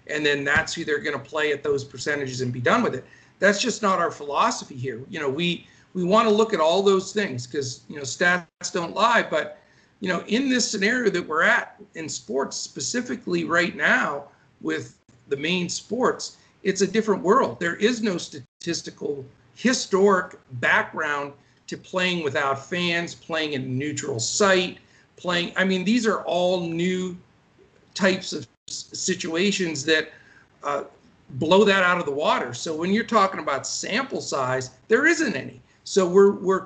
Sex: male